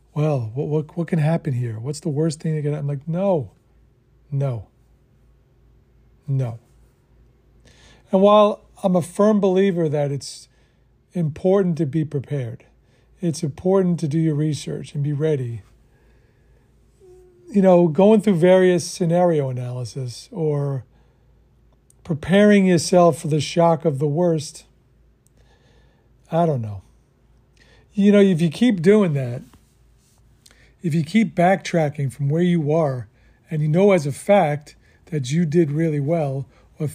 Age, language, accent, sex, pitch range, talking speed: 50-69, English, American, male, 130-175 Hz, 140 wpm